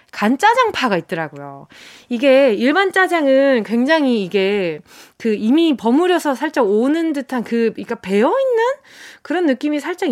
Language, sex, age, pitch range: Korean, female, 20-39, 205-300 Hz